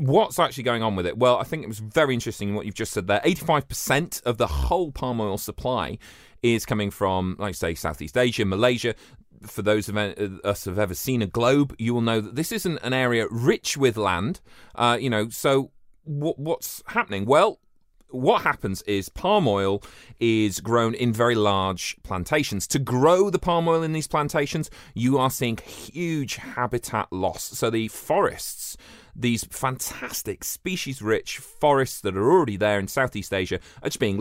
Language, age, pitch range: English, 30-49, 95-130 Hz